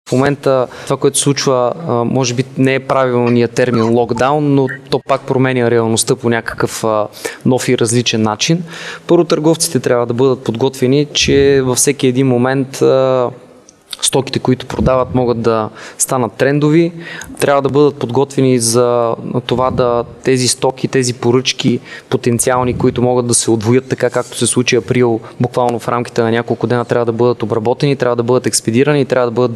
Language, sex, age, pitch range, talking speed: Bulgarian, male, 20-39, 120-135 Hz, 165 wpm